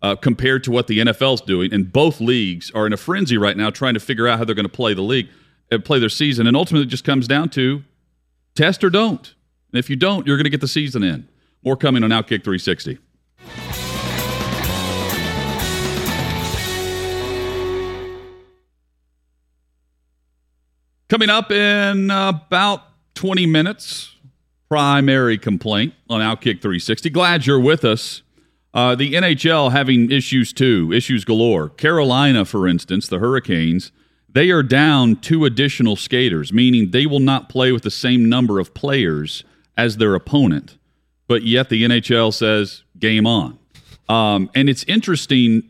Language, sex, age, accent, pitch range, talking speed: English, male, 40-59, American, 95-135 Hz, 150 wpm